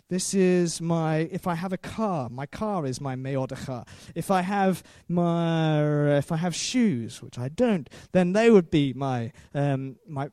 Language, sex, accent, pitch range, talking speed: English, male, British, 145-210 Hz, 175 wpm